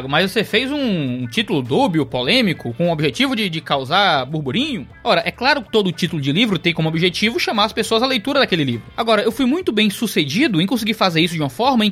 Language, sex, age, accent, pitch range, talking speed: Portuguese, male, 20-39, Brazilian, 180-250 Hz, 230 wpm